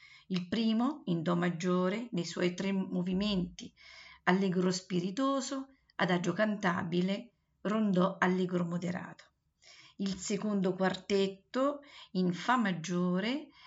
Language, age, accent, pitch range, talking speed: Italian, 50-69, native, 180-215 Hz, 95 wpm